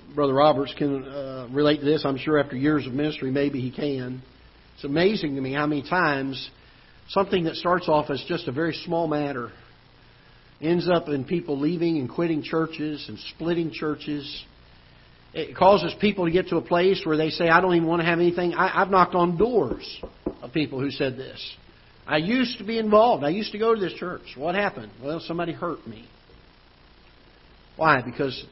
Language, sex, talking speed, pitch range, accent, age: English, male, 190 wpm, 130-170 Hz, American, 50-69